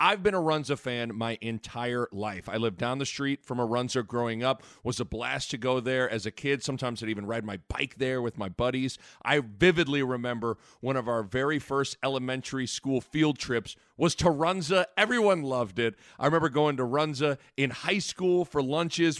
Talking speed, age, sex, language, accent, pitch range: 205 wpm, 40-59, male, English, American, 115-155 Hz